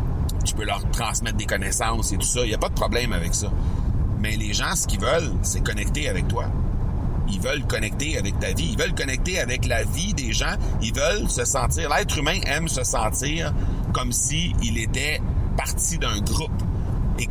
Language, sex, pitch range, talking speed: French, male, 90-110 Hz, 200 wpm